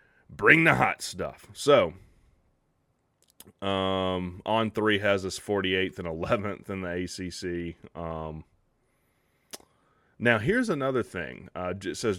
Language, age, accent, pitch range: English, 30-49, American, 90-110 Hz